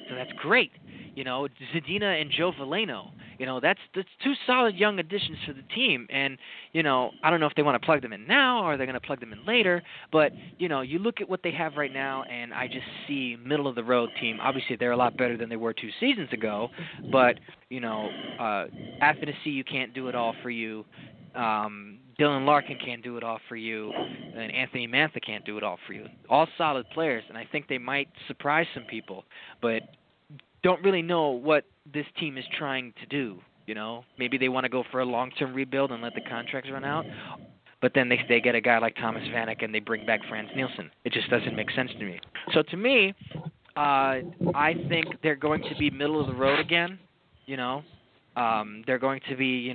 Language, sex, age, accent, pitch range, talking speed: English, male, 20-39, American, 120-155 Hz, 225 wpm